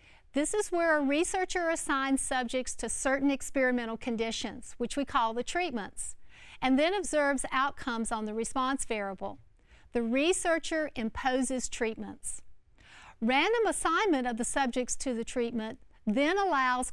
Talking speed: 135 wpm